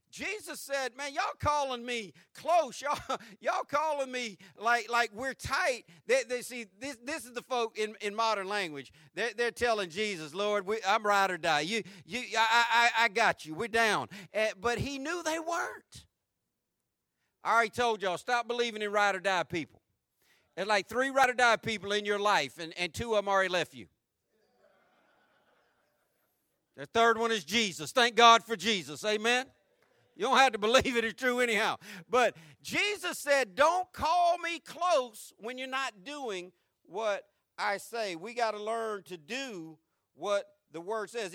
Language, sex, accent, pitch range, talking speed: English, male, American, 205-265 Hz, 180 wpm